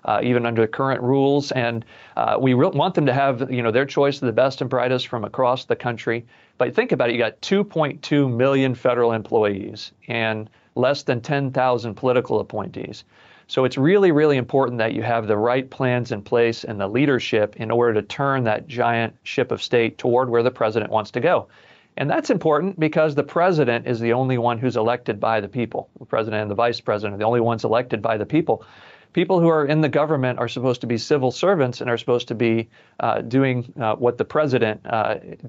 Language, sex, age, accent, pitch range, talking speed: English, male, 40-59, American, 115-135 Hz, 215 wpm